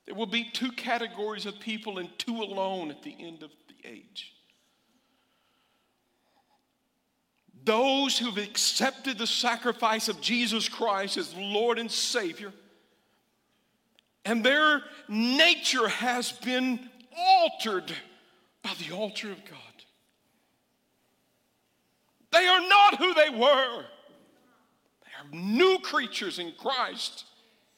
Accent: American